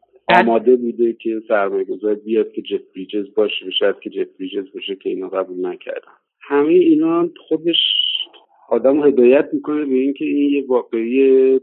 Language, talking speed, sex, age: Persian, 145 wpm, male, 50-69